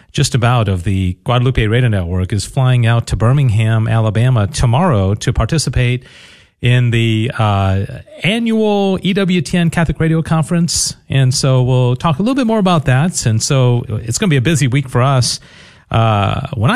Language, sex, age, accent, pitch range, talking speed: English, male, 40-59, American, 115-160 Hz, 170 wpm